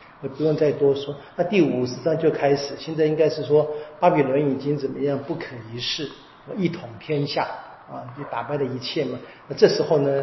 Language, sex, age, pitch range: Chinese, male, 50-69, 130-160 Hz